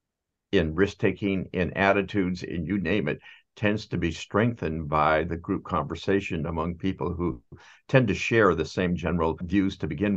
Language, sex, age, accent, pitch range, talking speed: English, male, 60-79, American, 85-105 Hz, 170 wpm